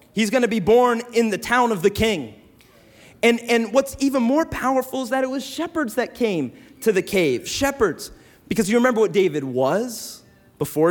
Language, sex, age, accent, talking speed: English, male, 30-49, American, 185 wpm